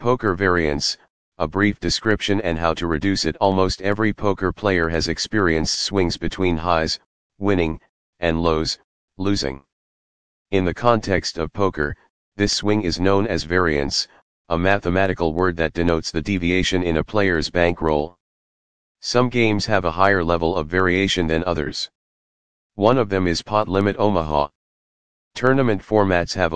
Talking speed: 145 wpm